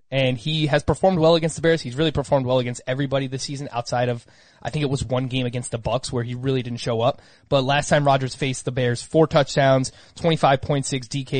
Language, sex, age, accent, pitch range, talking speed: English, male, 20-39, American, 130-155 Hz, 230 wpm